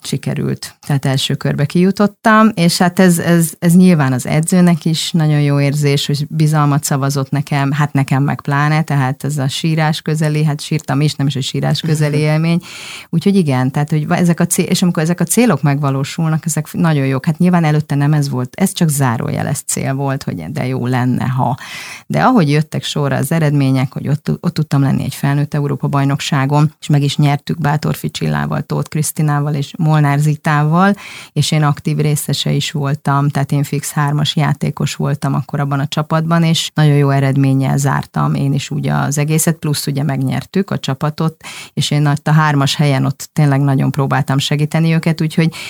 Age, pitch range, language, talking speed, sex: 30-49, 140-160 Hz, Hungarian, 185 wpm, female